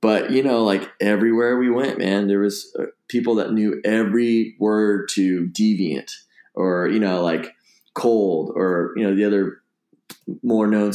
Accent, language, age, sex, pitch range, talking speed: American, English, 20-39, male, 95-110 Hz, 160 wpm